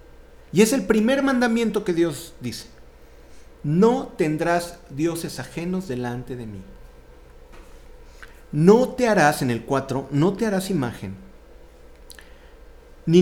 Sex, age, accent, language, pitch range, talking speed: male, 50-69, Mexican, Spanish, 125-195 Hz, 120 wpm